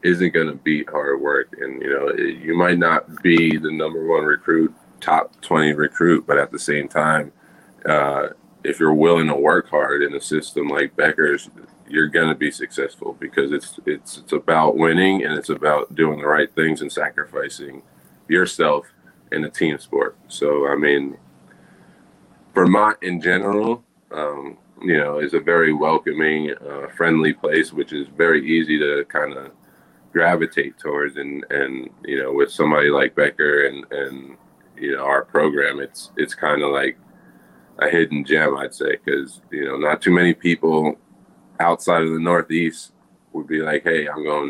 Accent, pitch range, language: American, 75-85 Hz, English